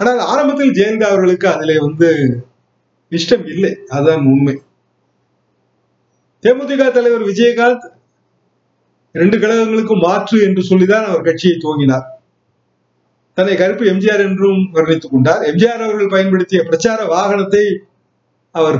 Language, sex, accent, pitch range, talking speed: Tamil, male, native, 155-220 Hz, 105 wpm